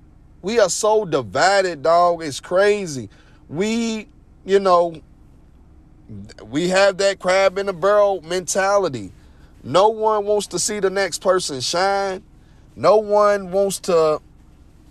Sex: male